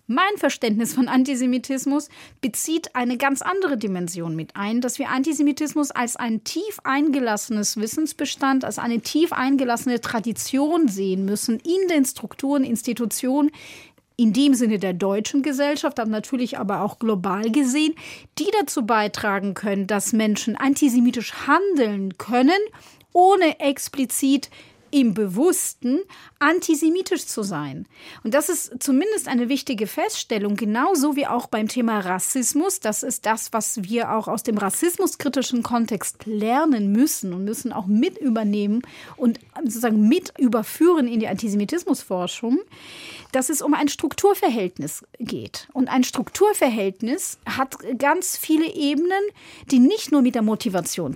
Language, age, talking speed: German, 30-49, 135 wpm